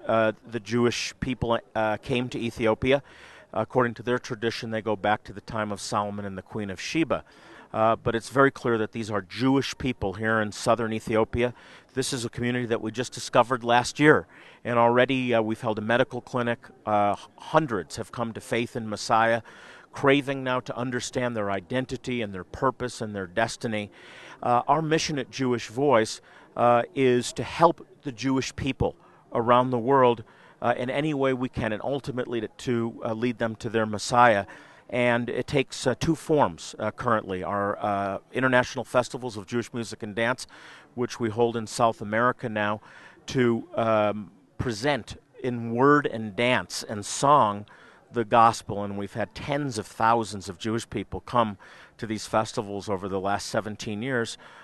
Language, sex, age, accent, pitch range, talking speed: English, male, 40-59, American, 110-125 Hz, 180 wpm